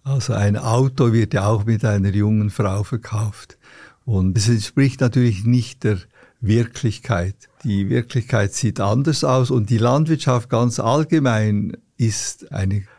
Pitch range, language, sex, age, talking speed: 110-135 Hz, German, male, 60-79, 140 wpm